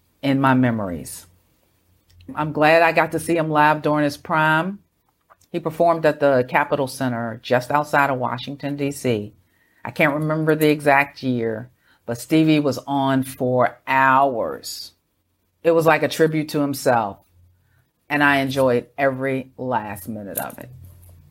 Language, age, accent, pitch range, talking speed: English, 50-69, American, 115-150 Hz, 145 wpm